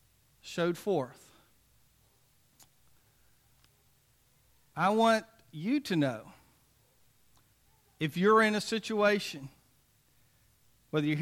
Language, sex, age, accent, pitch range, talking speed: English, male, 50-69, American, 130-180 Hz, 75 wpm